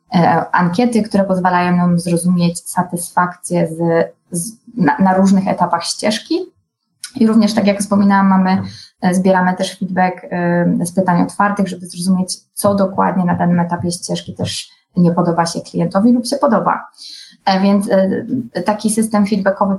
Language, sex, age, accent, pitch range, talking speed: Polish, female, 20-39, native, 180-215 Hz, 145 wpm